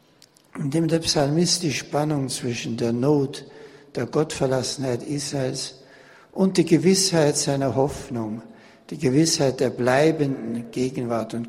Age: 60-79